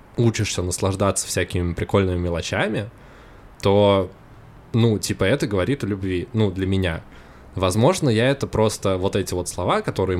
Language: Russian